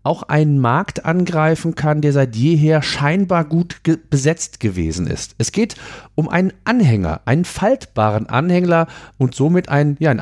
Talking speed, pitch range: 160 wpm, 125-165 Hz